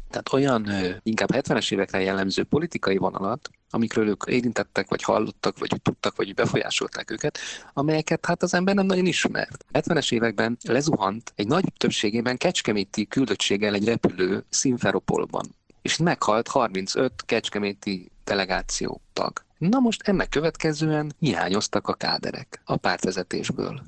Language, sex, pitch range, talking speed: Hungarian, male, 105-155 Hz, 130 wpm